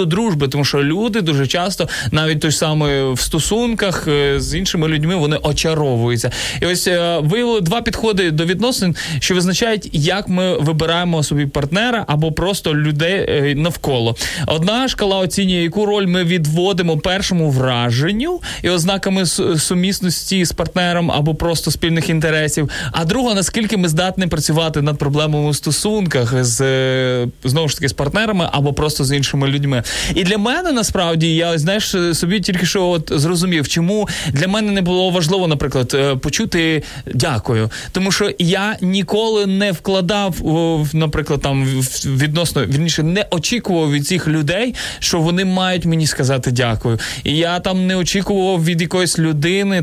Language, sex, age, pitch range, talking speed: Ukrainian, male, 20-39, 150-190 Hz, 145 wpm